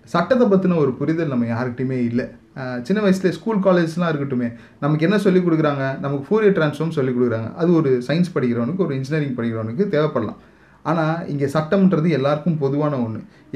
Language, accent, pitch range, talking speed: Tamil, native, 125-160 Hz, 155 wpm